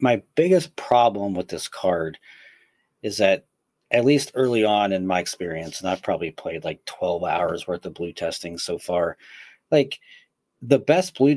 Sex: male